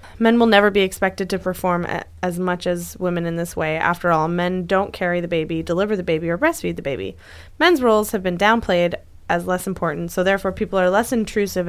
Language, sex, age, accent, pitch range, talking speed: English, female, 20-39, American, 175-205 Hz, 215 wpm